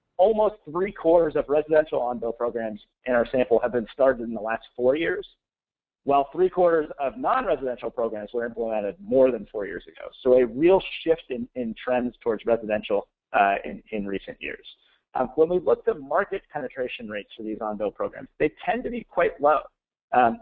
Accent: American